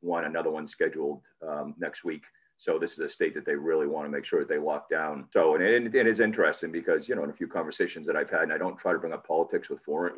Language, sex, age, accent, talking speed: English, male, 40-59, American, 295 wpm